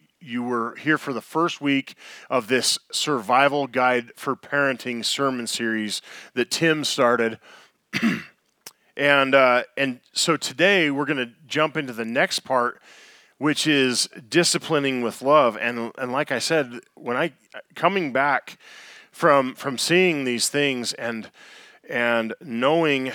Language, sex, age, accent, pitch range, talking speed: English, male, 40-59, American, 115-145 Hz, 135 wpm